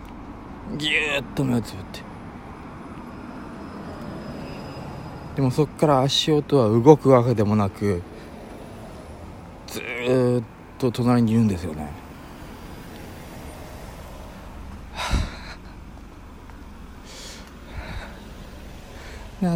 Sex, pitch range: male, 80-125 Hz